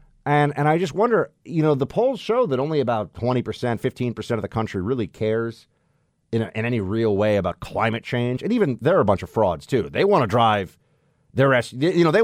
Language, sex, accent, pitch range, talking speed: English, male, American, 110-145 Hz, 235 wpm